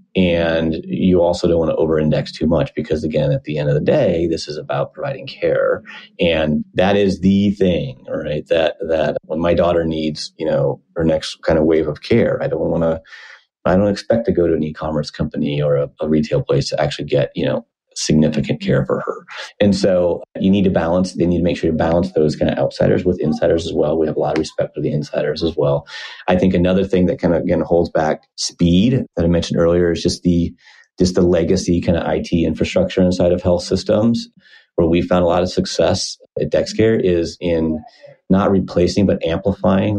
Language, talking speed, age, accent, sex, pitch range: English, 220 wpm, 30-49, American, male, 80-95 Hz